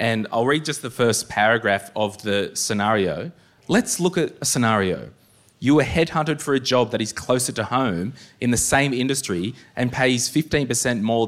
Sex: male